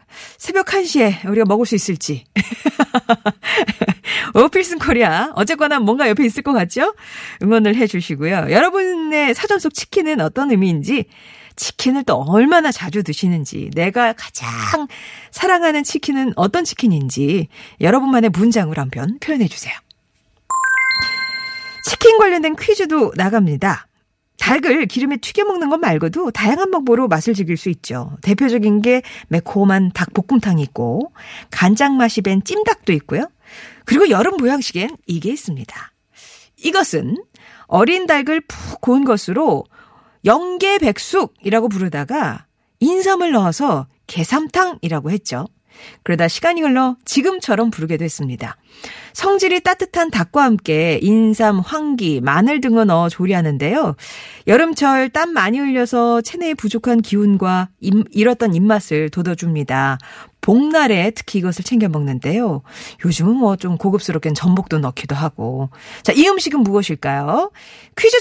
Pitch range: 180-290 Hz